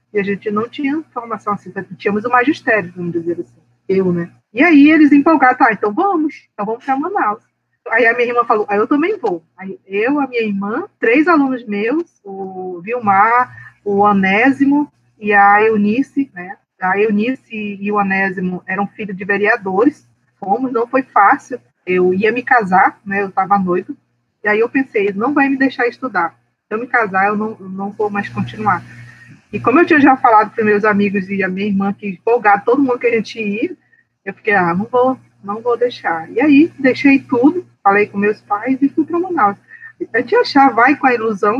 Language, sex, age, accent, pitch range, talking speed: Portuguese, female, 20-39, Brazilian, 200-270 Hz, 205 wpm